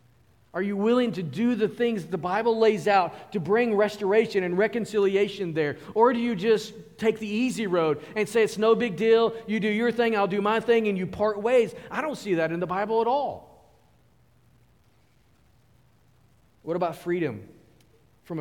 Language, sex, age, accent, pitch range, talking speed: English, male, 40-59, American, 125-190 Hz, 185 wpm